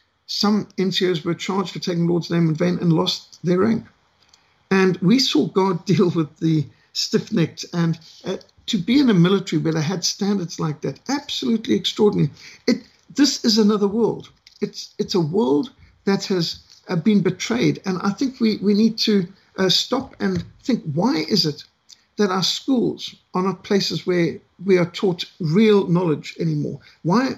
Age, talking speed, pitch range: 60-79, 175 wpm, 165-215 Hz